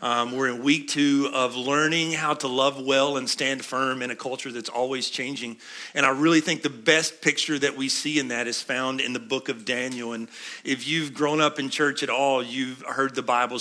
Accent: American